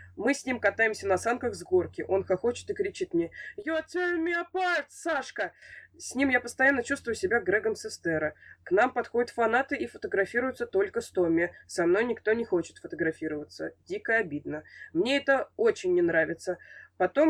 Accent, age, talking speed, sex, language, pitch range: native, 20-39, 165 wpm, female, Russian, 170-285 Hz